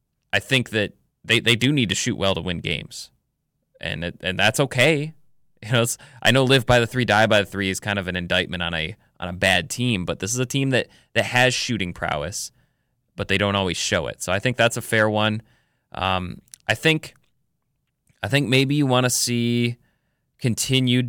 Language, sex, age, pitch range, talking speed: English, male, 20-39, 95-120 Hz, 215 wpm